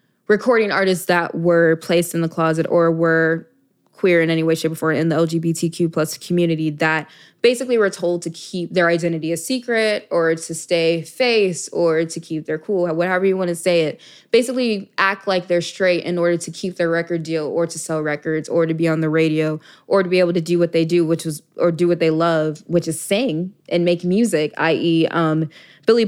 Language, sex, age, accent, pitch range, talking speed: English, female, 20-39, American, 160-175 Hz, 215 wpm